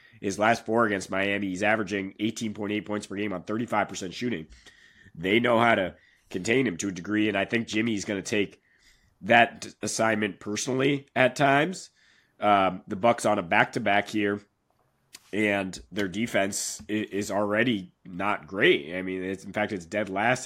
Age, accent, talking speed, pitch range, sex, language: 30-49, American, 170 wpm, 100-115 Hz, male, English